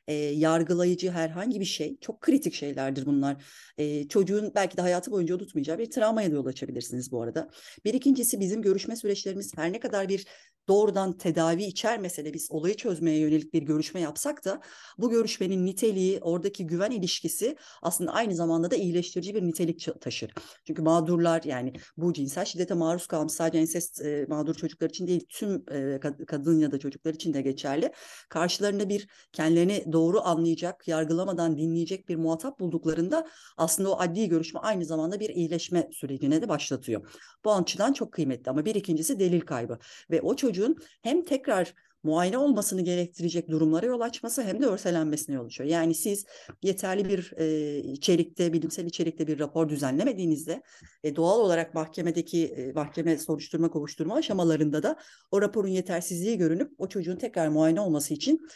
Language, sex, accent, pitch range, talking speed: Turkish, female, native, 155-200 Hz, 160 wpm